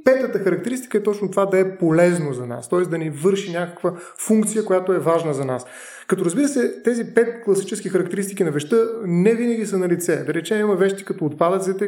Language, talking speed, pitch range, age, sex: Bulgarian, 205 wpm, 170-210 Hz, 20-39, male